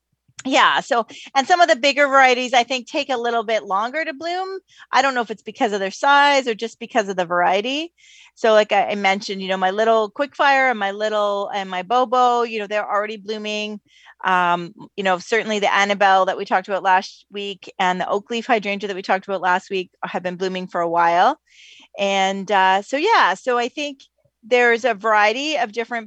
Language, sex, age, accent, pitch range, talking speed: English, female, 30-49, American, 200-265 Hz, 215 wpm